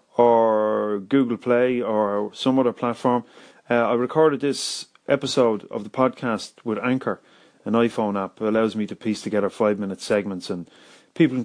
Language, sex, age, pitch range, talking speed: English, male, 30-49, 105-130 Hz, 155 wpm